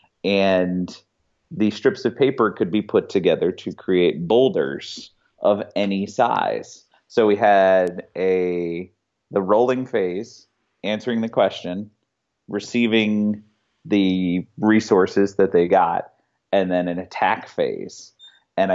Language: English